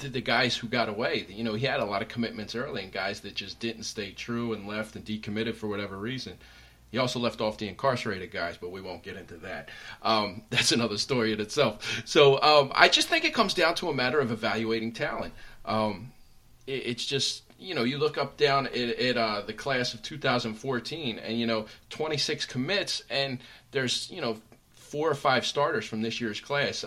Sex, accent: male, American